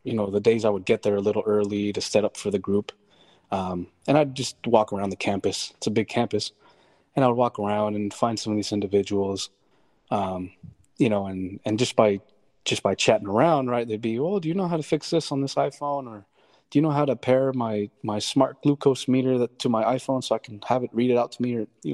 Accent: American